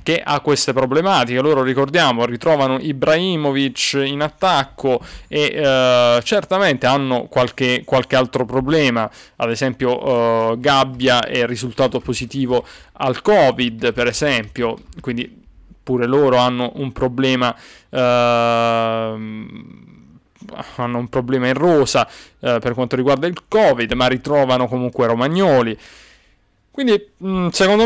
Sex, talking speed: male, 115 wpm